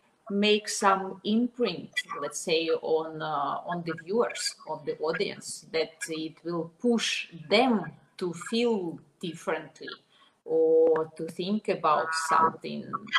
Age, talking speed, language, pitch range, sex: 30-49, 120 wpm, English, 160-210 Hz, female